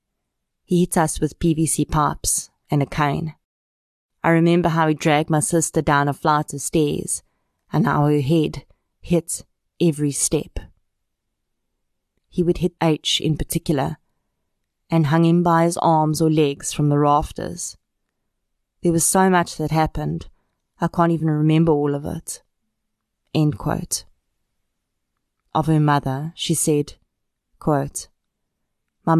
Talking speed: 130 wpm